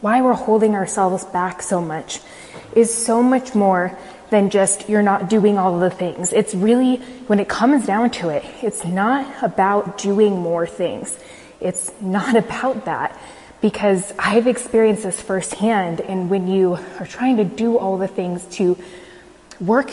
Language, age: English, 20-39